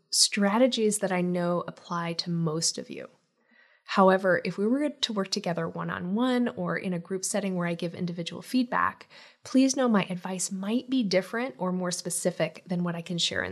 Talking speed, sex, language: 190 wpm, female, English